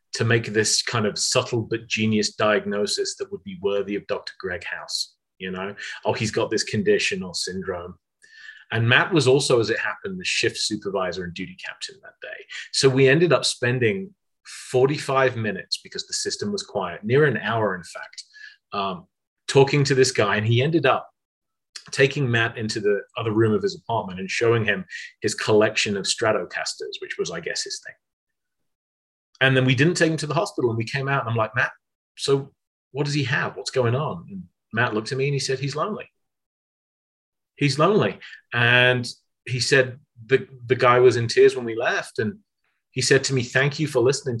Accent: British